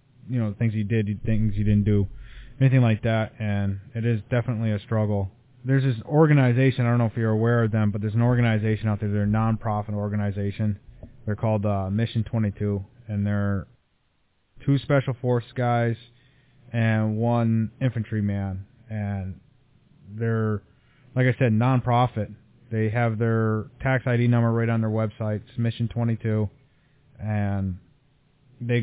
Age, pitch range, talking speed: 20-39, 105-125 Hz, 155 wpm